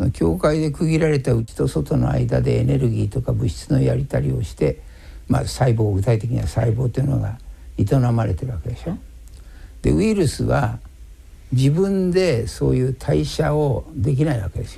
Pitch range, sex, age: 90-150 Hz, male, 60-79